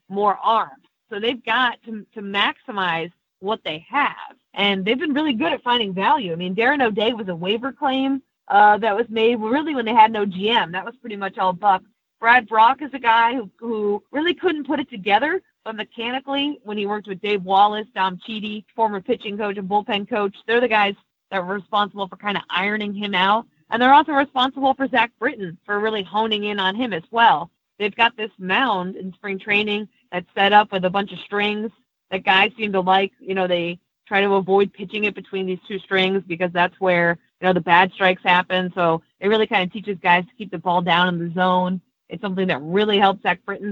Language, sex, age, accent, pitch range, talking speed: English, female, 30-49, American, 185-230 Hz, 220 wpm